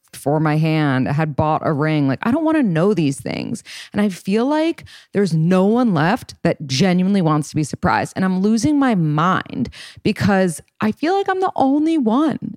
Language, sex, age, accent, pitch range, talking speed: English, female, 20-39, American, 145-185 Hz, 205 wpm